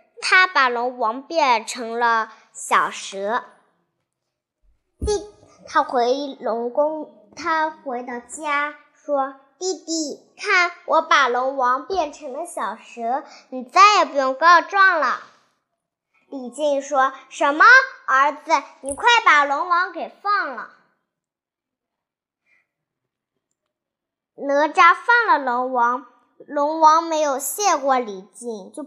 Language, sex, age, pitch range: Chinese, male, 10-29, 260-345 Hz